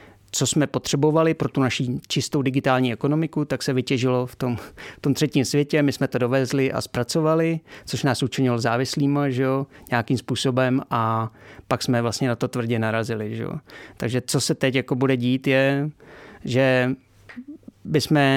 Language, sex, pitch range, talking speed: Czech, male, 120-140 Hz, 170 wpm